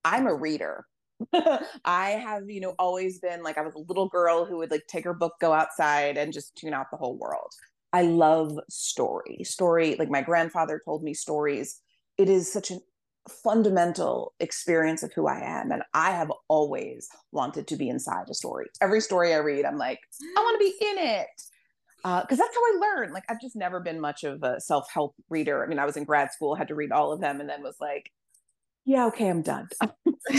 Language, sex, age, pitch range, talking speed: English, female, 30-49, 160-225 Hz, 215 wpm